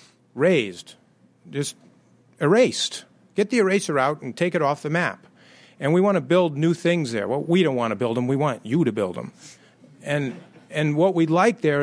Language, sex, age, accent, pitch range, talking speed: English, male, 40-59, American, 135-175 Hz, 205 wpm